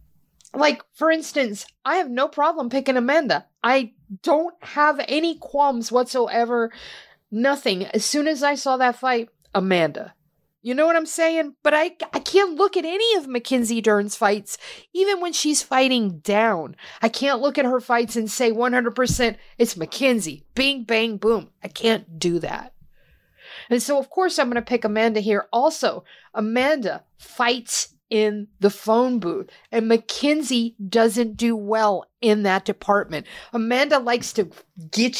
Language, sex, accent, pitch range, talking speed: English, female, American, 215-285 Hz, 155 wpm